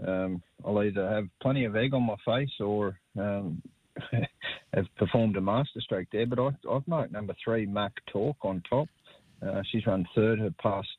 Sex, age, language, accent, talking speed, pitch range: male, 30-49, English, Australian, 185 wpm, 90-110 Hz